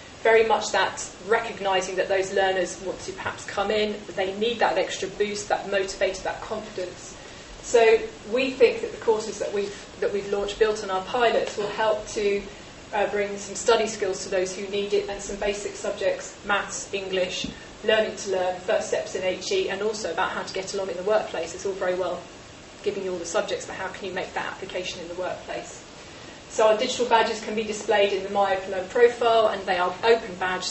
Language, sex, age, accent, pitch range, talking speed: English, female, 30-49, British, 185-220 Hz, 205 wpm